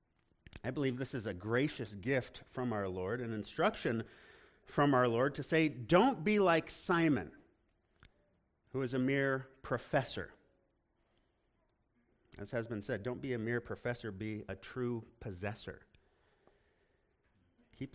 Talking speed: 135 wpm